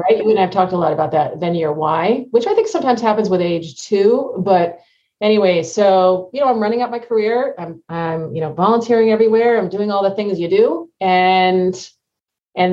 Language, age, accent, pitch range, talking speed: English, 40-59, American, 160-200 Hz, 210 wpm